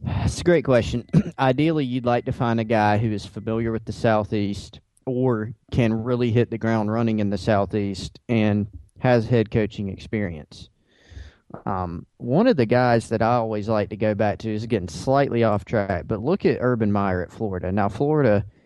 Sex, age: male, 30-49